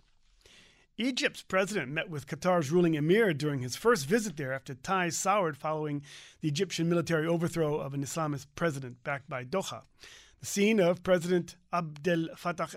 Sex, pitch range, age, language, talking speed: male, 155-195 Hz, 40-59, English, 155 wpm